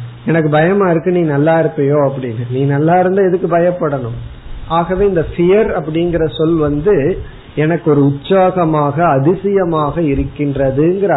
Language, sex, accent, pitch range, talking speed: Tamil, male, native, 140-175 Hz, 95 wpm